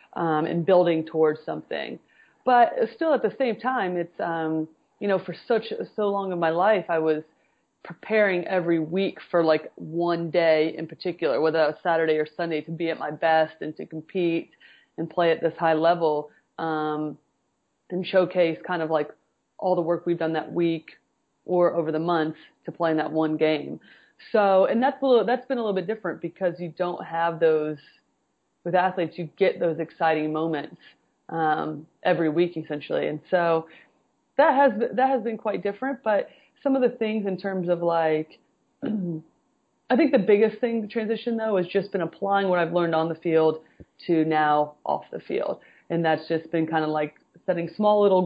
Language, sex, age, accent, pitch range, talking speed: English, female, 30-49, American, 160-190 Hz, 190 wpm